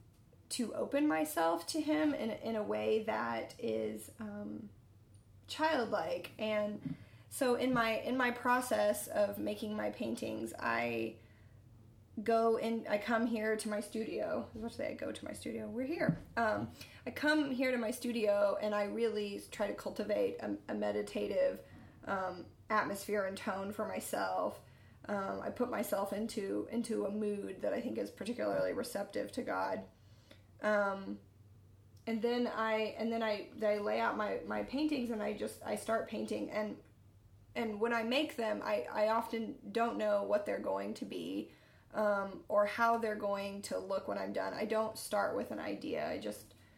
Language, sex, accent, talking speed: English, female, American, 170 wpm